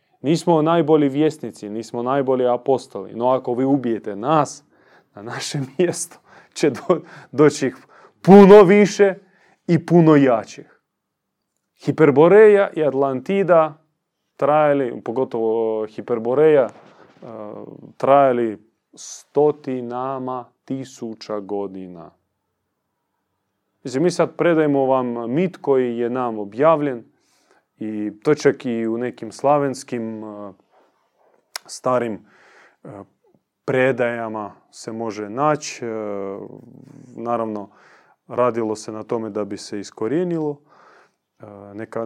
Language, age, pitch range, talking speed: Croatian, 30-49, 110-145 Hz, 95 wpm